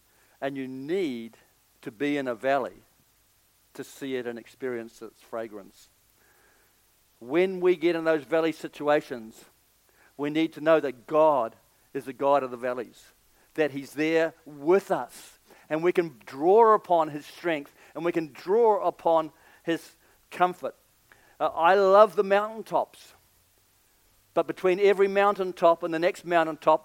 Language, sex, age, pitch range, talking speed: English, male, 50-69, 140-190 Hz, 145 wpm